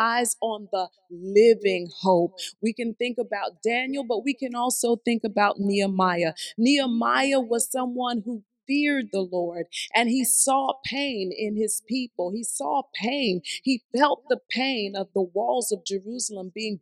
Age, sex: 40-59, female